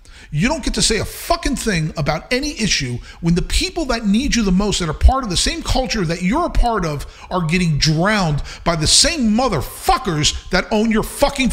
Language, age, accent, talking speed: English, 40-59, American, 220 wpm